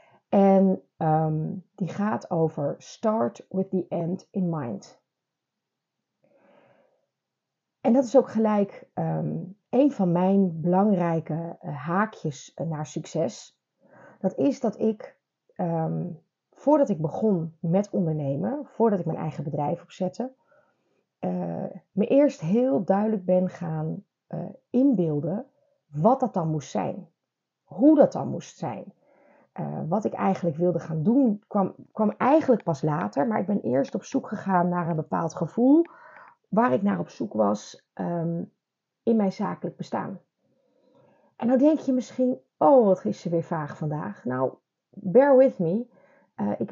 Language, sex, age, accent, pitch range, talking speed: Dutch, female, 30-49, Dutch, 165-230 Hz, 140 wpm